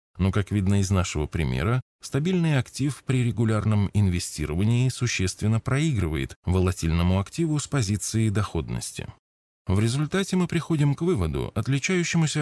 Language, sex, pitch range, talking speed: Russian, male, 90-125 Hz, 120 wpm